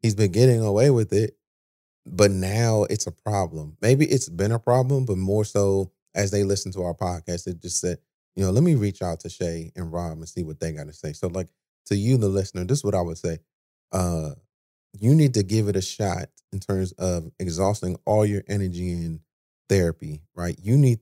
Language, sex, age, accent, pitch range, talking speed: English, male, 30-49, American, 85-105 Hz, 220 wpm